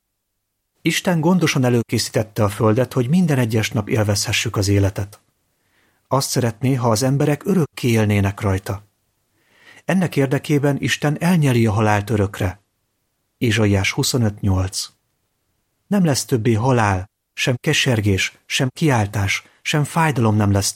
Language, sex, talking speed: Hungarian, male, 120 wpm